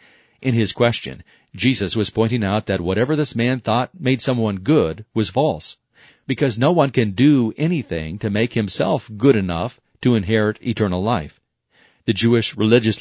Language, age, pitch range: English, 40-59, 100-125 Hz